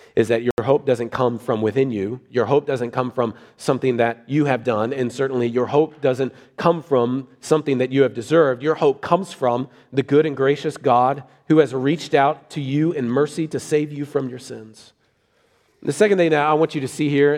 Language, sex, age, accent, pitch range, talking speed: English, male, 40-59, American, 130-155 Hz, 220 wpm